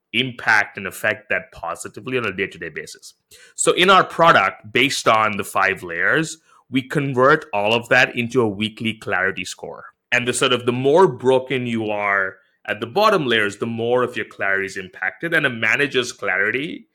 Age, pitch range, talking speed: 30-49, 105-130 Hz, 185 wpm